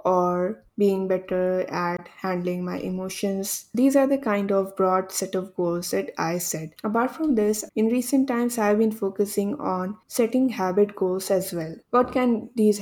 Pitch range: 185-220 Hz